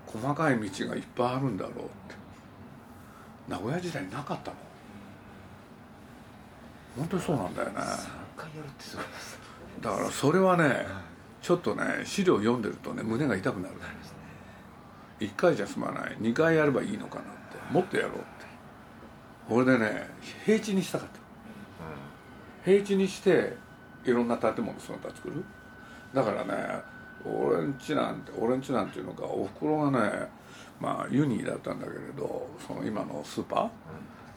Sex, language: male, Japanese